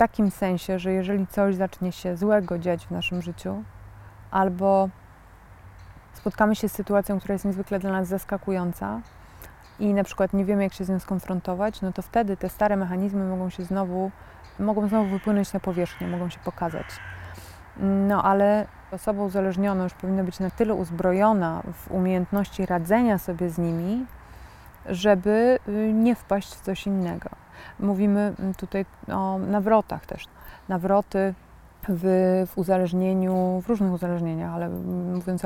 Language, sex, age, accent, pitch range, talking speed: Polish, female, 20-39, native, 180-200 Hz, 145 wpm